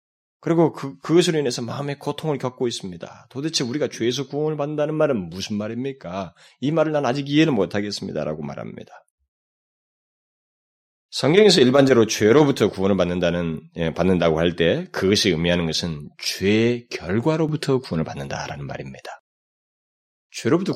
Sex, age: male, 30-49